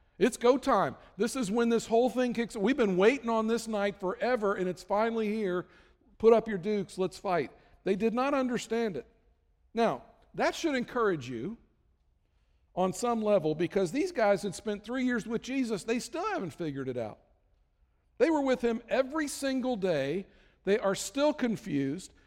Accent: American